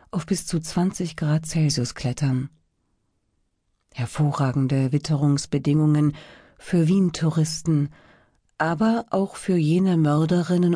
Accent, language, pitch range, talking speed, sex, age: German, German, 140-175 Hz, 90 wpm, female, 40-59